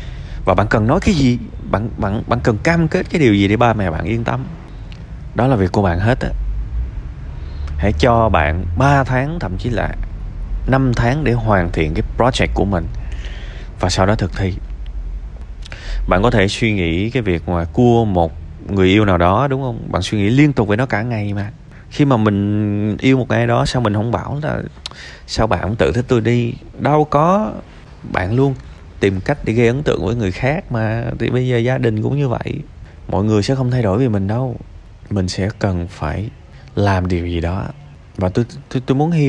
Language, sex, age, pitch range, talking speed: Vietnamese, male, 20-39, 90-125 Hz, 210 wpm